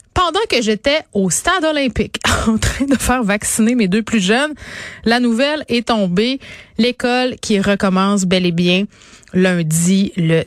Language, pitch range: French, 180-225 Hz